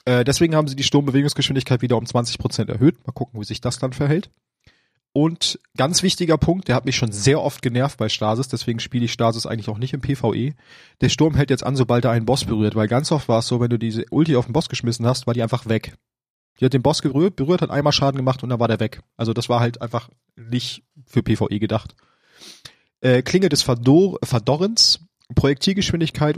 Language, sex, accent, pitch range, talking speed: German, male, German, 115-145 Hz, 215 wpm